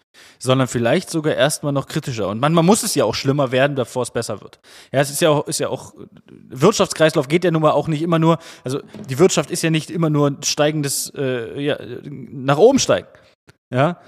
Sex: male